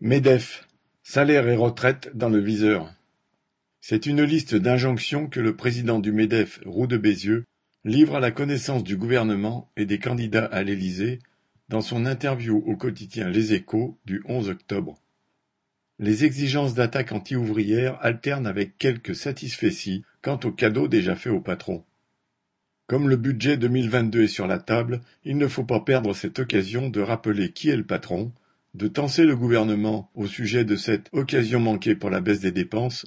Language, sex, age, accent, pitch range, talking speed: French, male, 50-69, French, 105-130 Hz, 165 wpm